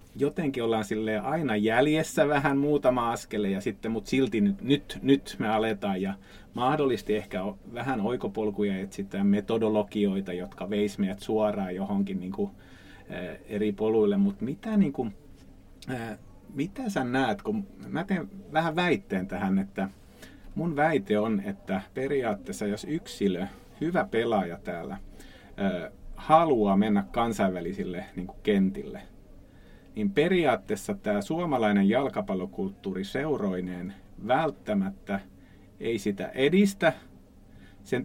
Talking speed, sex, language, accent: 110 wpm, male, Finnish, native